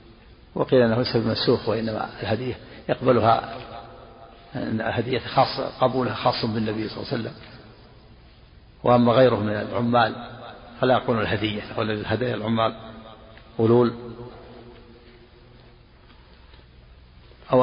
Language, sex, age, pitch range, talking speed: Arabic, male, 60-79, 110-120 Hz, 100 wpm